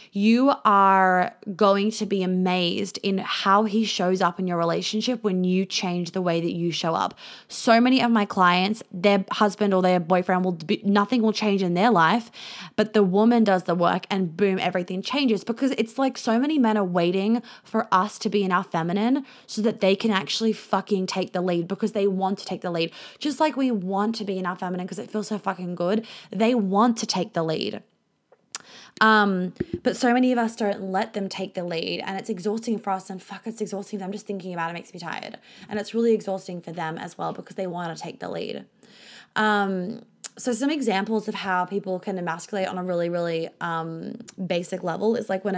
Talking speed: 220 wpm